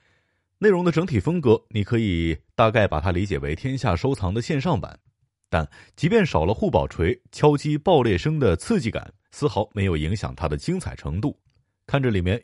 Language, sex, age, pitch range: Chinese, male, 30-49, 90-130 Hz